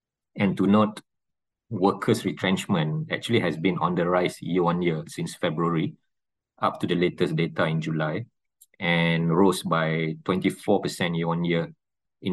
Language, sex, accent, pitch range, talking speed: English, male, Malaysian, 85-95 Hz, 130 wpm